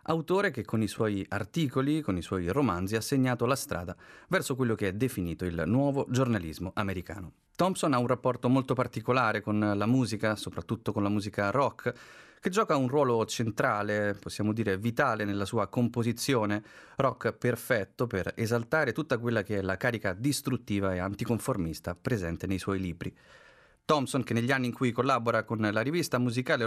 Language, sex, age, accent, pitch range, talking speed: Italian, male, 30-49, native, 105-130 Hz, 170 wpm